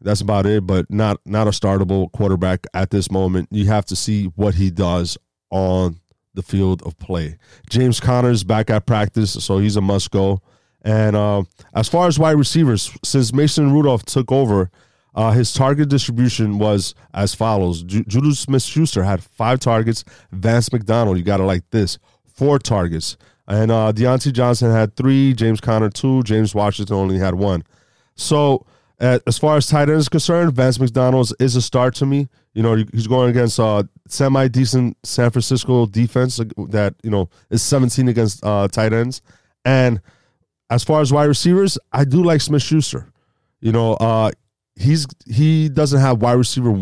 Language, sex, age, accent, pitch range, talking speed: English, male, 30-49, American, 105-130 Hz, 170 wpm